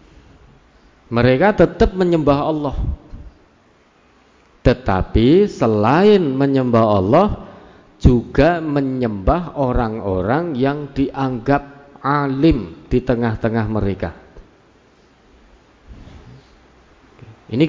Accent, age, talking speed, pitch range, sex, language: native, 50-69, 60 wpm, 110-140 Hz, male, Indonesian